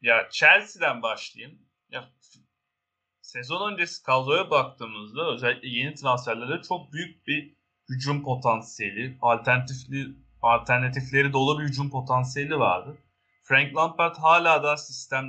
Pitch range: 120-150 Hz